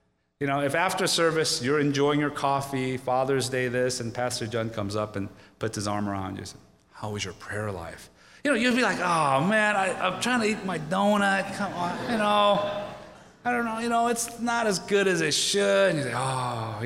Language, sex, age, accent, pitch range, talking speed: English, male, 30-49, American, 105-175 Hz, 225 wpm